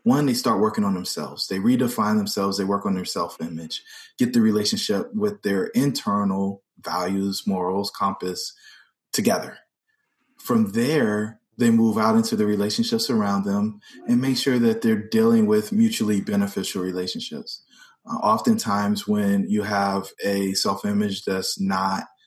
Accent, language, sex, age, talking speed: American, English, male, 20-39, 140 wpm